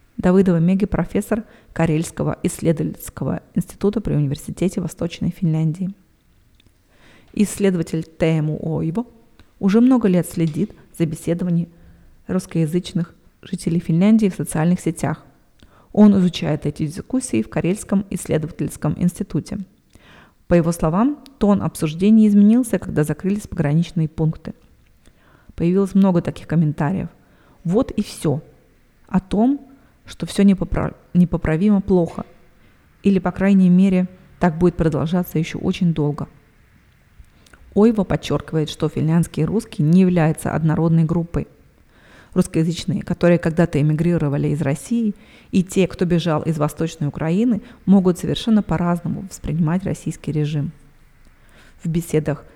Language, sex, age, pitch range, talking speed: Russian, female, 30-49, 160-195 Hz, 110 wpm